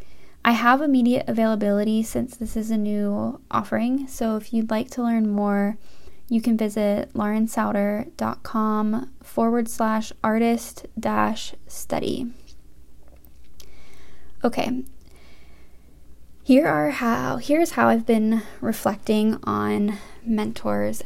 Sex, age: female, 10-29